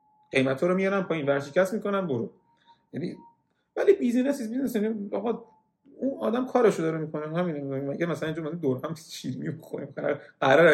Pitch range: 135-200 Hz